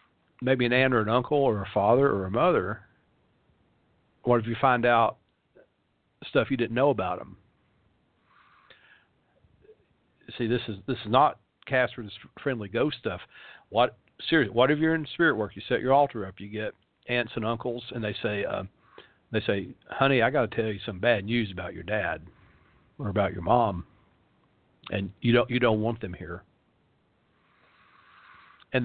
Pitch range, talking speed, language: 105-135 Hz, 170 wpm, English